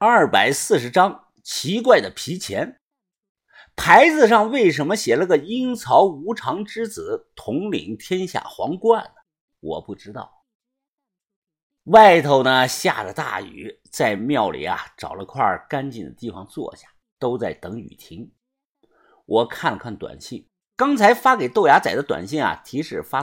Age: 50-69